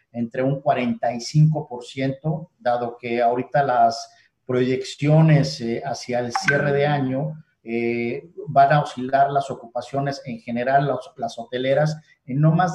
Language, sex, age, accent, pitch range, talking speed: Spanish, male, 40-59, Mexican, 125-150 Hz, 130 wpm